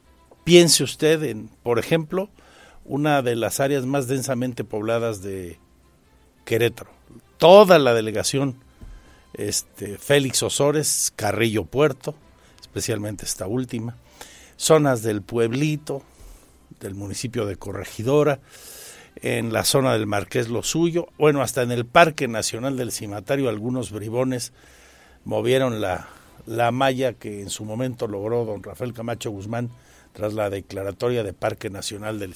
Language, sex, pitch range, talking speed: Spanish, male, 100-135 Hz, 125 wpm